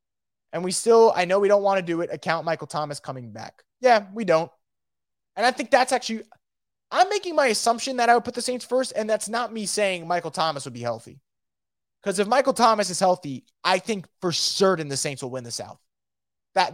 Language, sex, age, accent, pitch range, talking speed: English, male, 20-39, American, 150-215 Hz, 220 wpm